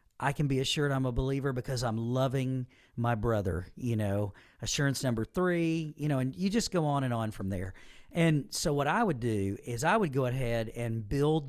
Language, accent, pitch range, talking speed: English, American, 120-145 Hz, 215 wpm